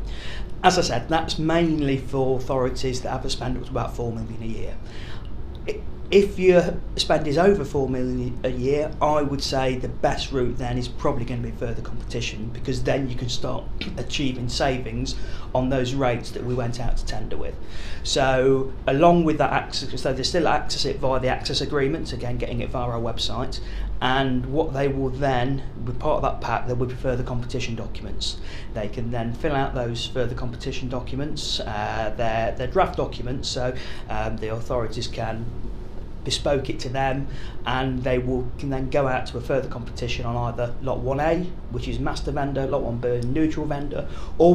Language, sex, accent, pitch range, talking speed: English, male, British, 115-135 Hz, 185 wpm